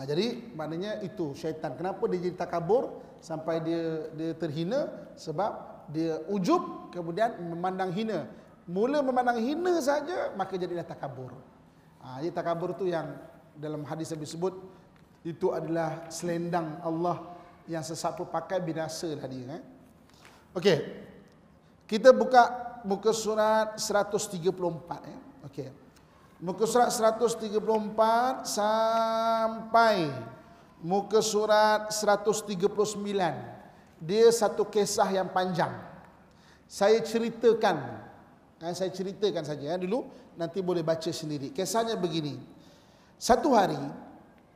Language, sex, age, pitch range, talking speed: Malay, male, 30-49, 165-220 Hz, 105 wpm